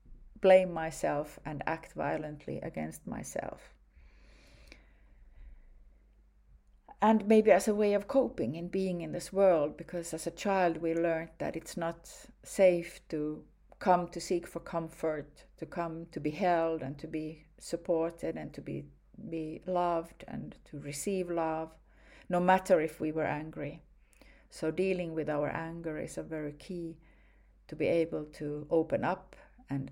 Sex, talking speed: female, 150 wpm